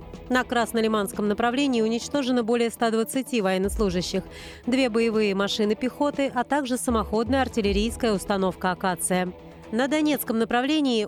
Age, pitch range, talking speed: 30-49, 210-255 Hz, 110 wpm